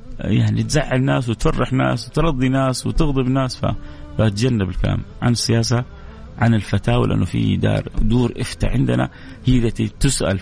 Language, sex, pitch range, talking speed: English, male, 100-135 Hz, 125 wpm